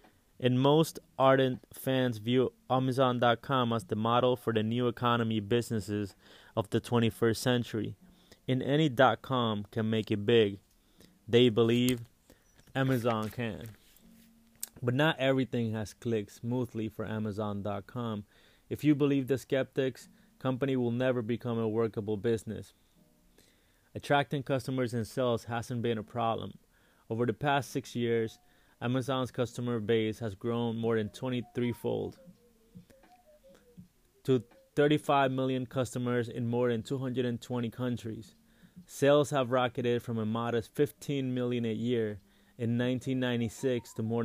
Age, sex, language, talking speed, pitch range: 20-39, male, English, 125 wpm, 115-130 Hz